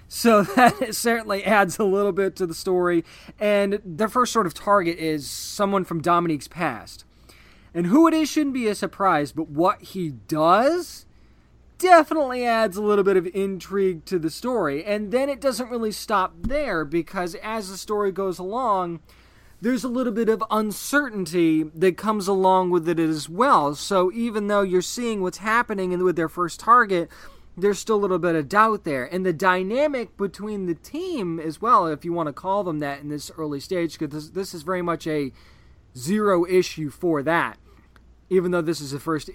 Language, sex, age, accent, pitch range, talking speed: English, male, 20-39, American, 160-205 Hz, 190 wpm